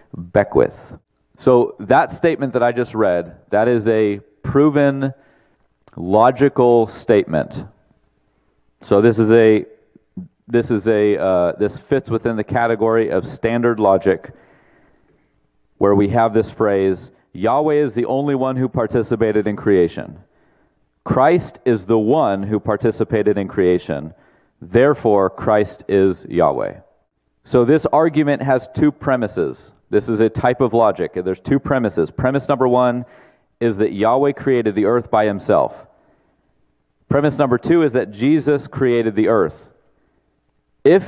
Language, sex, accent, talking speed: English, male, American, 135 wpm